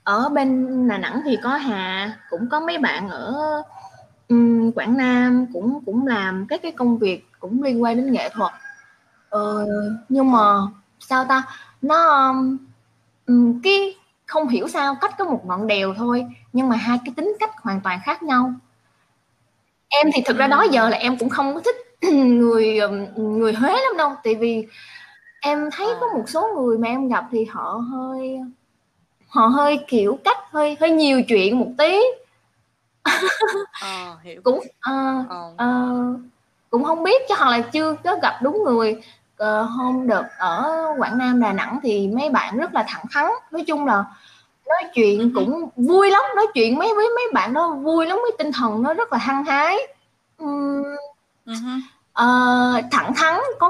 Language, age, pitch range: Vietnamese, 20-39, 225-300 Hz